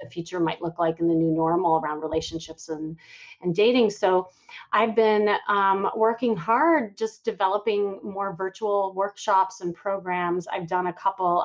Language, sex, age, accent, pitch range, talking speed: English, female, 30-49, American, 175-225 Hz, 160 wpm